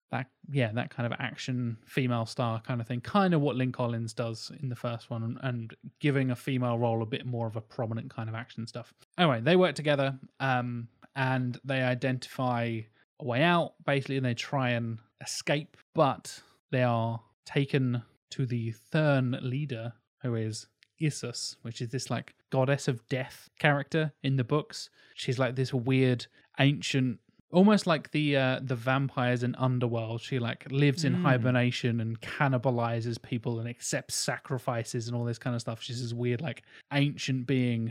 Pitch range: 120-135 Hz